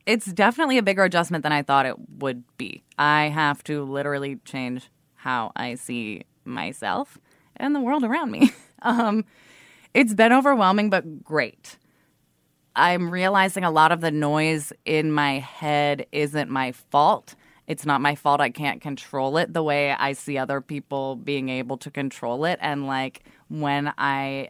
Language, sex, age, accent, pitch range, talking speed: English, female, 20-39, American, 135-160 Hz, 165 wpm